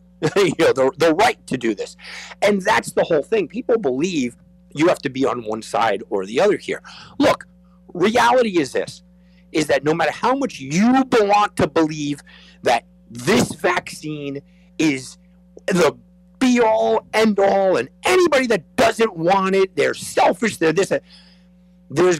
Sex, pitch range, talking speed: male, 145-185 Hz, 155 wpm